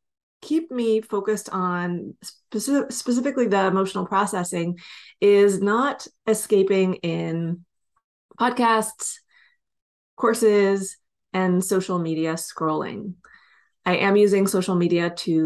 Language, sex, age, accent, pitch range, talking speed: English, female, 30-49, American, 175-215 Hz, 95 wpm